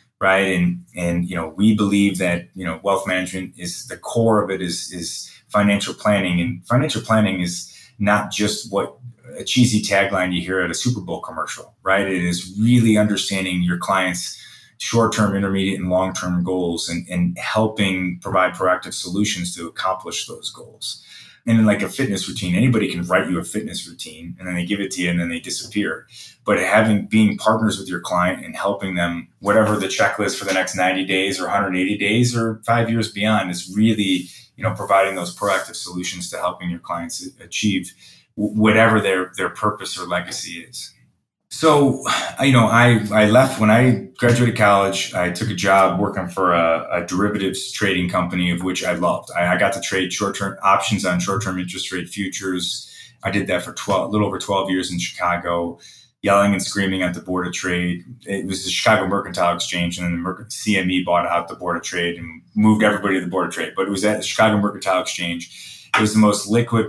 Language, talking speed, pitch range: English, 205 wpm, 90-105 Hz